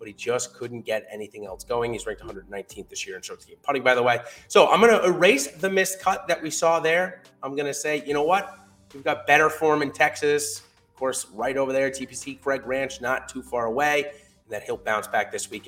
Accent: American